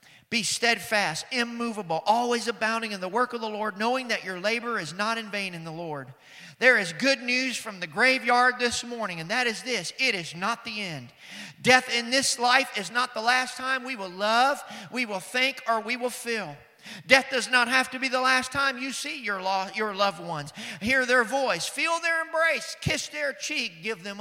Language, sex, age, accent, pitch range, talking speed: English, male, 40-59, American, 205-275 Hz, 210 wpm